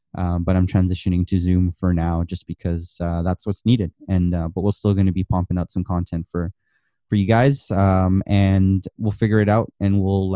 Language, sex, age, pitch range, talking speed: English, male, 20-39, 95-110 Hz, 220 wpm